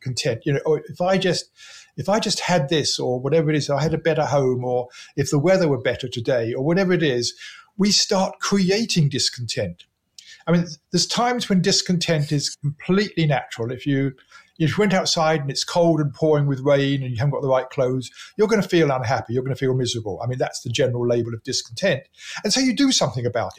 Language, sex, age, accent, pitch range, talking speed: English, male, 50-69, British, 130-175 Hz, 225 wpm